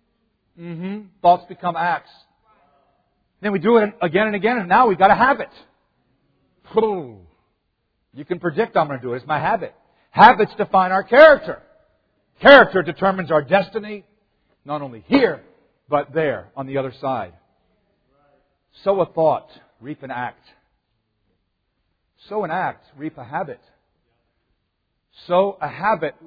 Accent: American